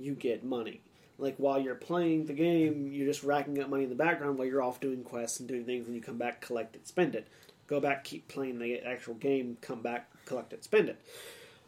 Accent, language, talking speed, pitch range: American, English, 235 wpm, 130-165 Hz